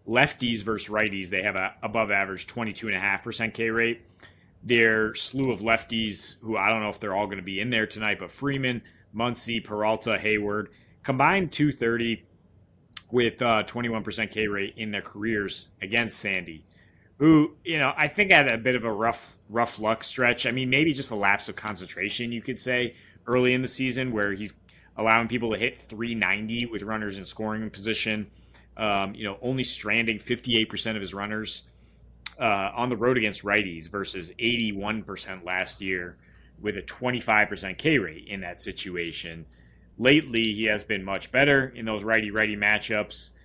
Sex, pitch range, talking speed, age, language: male, 95-115 Hz, 170 wpm, 30-49, English